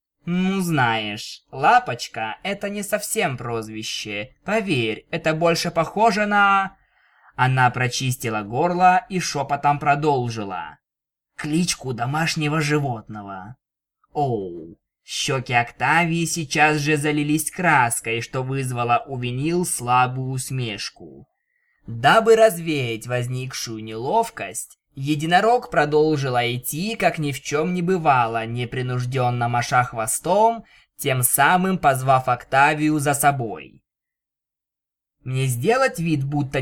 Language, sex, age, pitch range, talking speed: Russian, male, 20-39, 125-175 Hz, 100 wpm